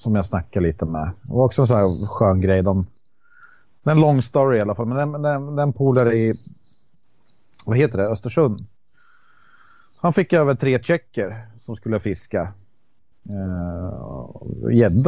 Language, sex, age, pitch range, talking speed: Swedish, male, 30-49, 100-145 Hz, 150 wpm